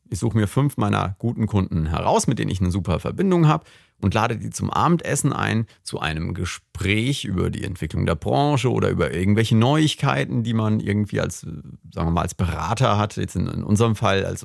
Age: 40-59